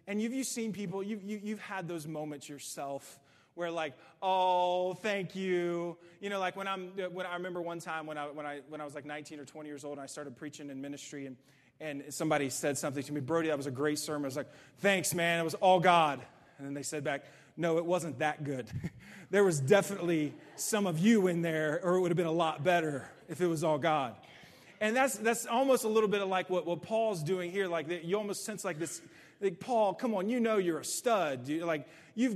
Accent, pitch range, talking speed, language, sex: American, 155-195 Hz, 235 wpm, English, male